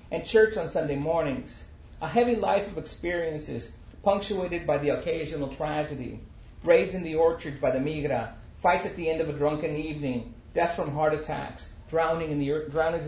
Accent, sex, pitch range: American, male, 130-185 Hz